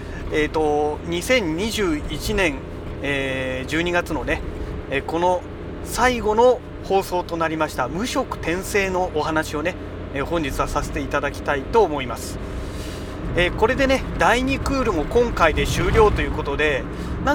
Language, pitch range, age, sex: Japanese, 130-170 Hz, 40-59, male